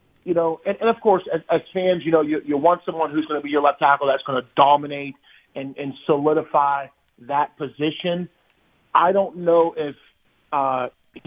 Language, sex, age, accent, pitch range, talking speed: English, male, 30-49, American, 145-165 Hz, 190 wpm